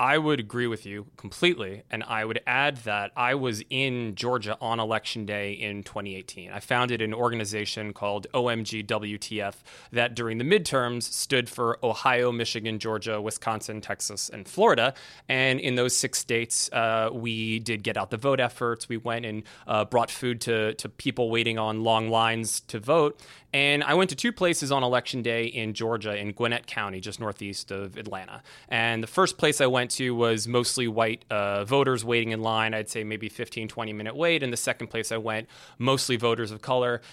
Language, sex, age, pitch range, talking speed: English, male, 20-39, 110-125 Hz, 190 wpm